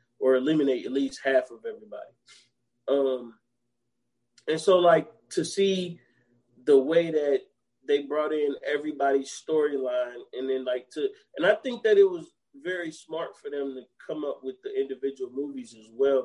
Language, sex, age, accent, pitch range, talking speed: English, male, 20-39, American, 120-155 Hz, 165 wpm